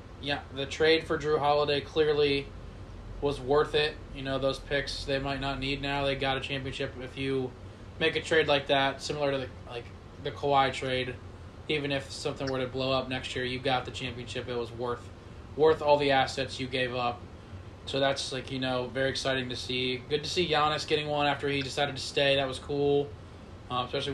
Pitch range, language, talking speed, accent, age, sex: 110-150 Hz, English, 210 wpm, American, 20-39, male